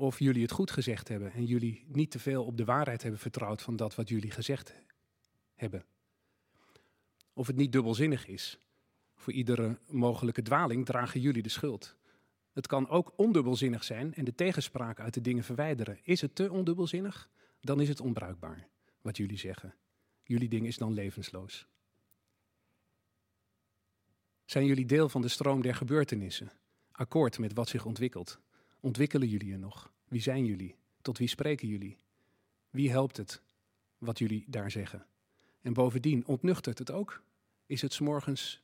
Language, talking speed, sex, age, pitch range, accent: Dutch, 160 wpm, male, 40-59, 105-135 Hz, Dutch